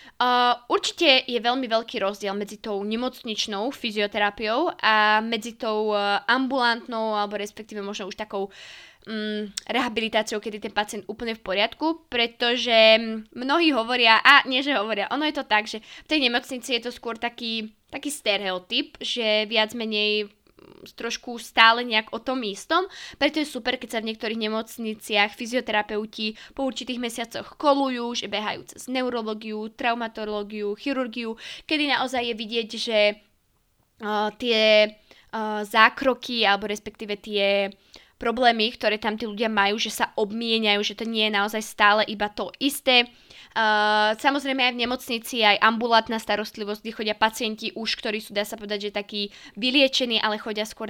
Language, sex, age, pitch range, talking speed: Slovak, female, 20-39, 210-245 Hz, 150 wpm